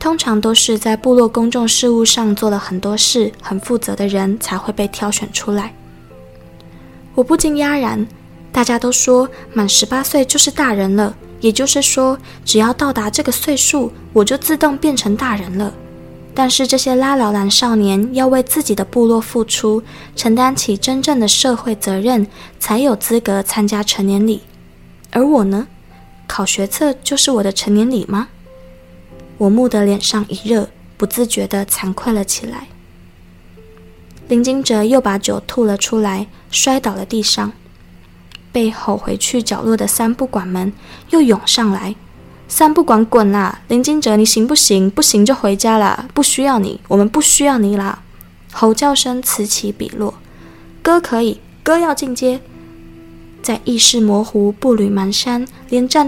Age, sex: 20-39, female